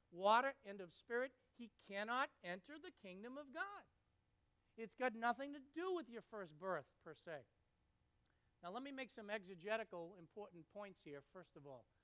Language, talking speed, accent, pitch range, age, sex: English, 170 wpm, American, 160-225 Hz, 50-69, male